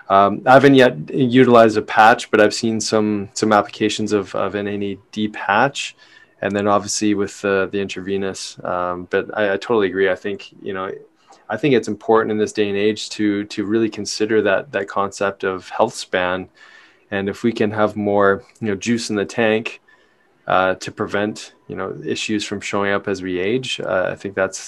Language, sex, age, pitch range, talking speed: English, male, 20-39, 100-120 Hz, 200 wpm